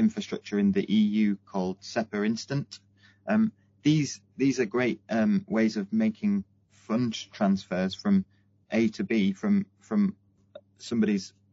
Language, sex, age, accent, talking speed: English, male, 30-49, British, 130 wpm